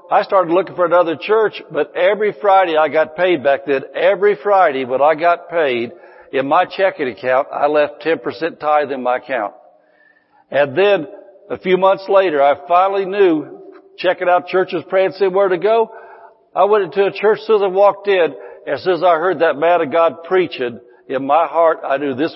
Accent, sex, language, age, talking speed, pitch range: American, male, English, 60-79, 200 wpm, 155-190 Hz